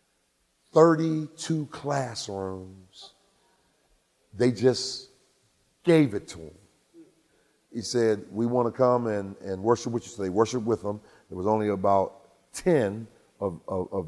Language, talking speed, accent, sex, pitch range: English, 135 wpm, American, male, 95-120 Hz